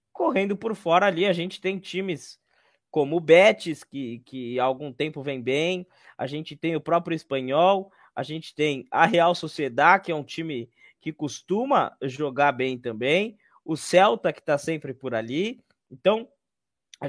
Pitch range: 135-180 Hz